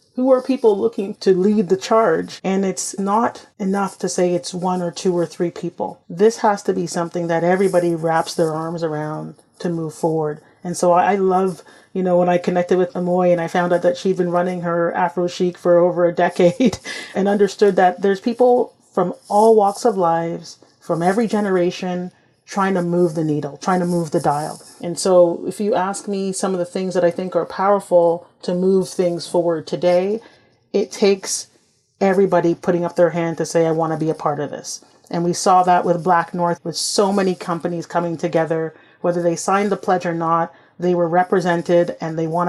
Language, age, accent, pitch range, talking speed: English, 30-49, American, 170-195 Hz, 210 wpm